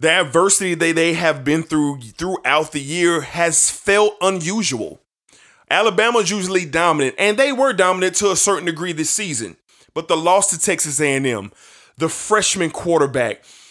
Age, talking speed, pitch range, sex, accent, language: 20-39, 155 wpm, 150-200 Hz, male, American, English